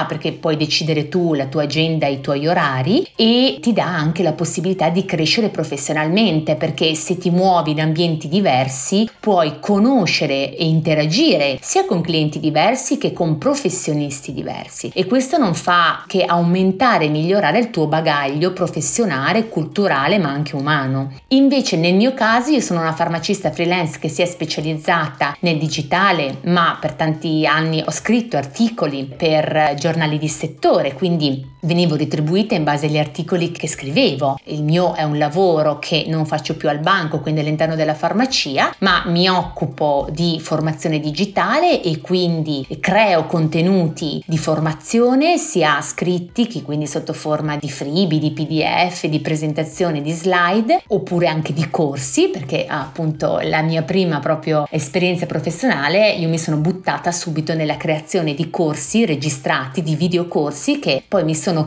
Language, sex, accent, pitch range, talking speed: Italian, female, native, 155-185 Hz, 155 wpm